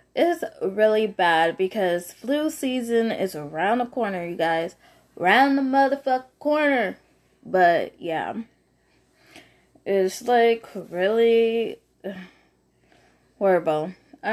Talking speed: 95 wpm